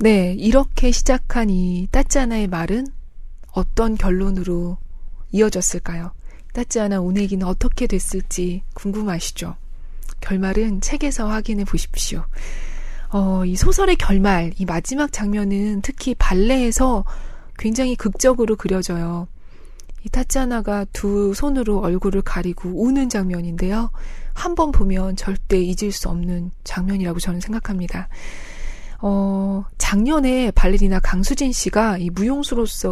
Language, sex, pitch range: Korean, female, 185-240 Hz